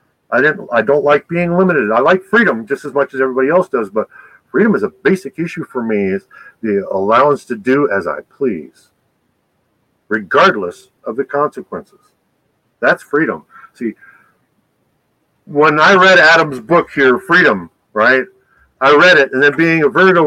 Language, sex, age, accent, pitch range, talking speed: English, male, 50-69, American, 130-175 Hz, 165 wpm